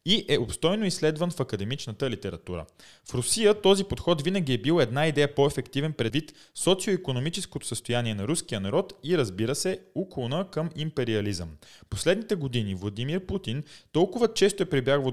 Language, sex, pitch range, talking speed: Bulgarian, male, 115-170 Hz, 145 wpm